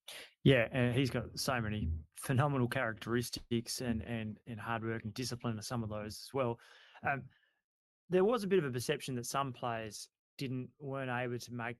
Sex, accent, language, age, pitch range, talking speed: male, Australian, English, 20-39, 115-130 Hz, 190 wpm